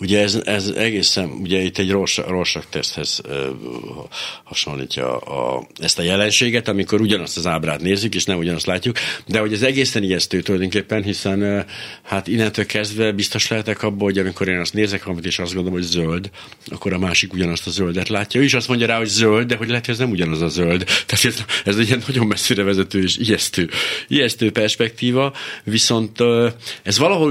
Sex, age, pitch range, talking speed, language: male, 60-79, 85-110 Hz, 195 wpm, Hungarian